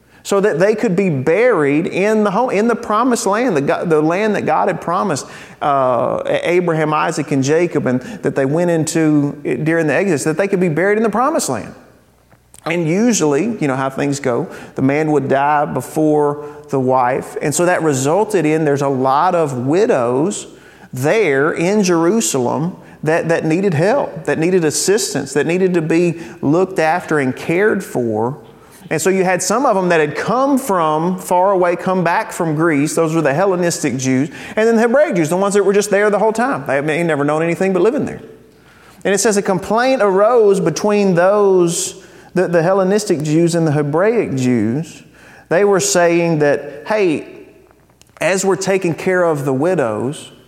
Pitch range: 150-195 Hz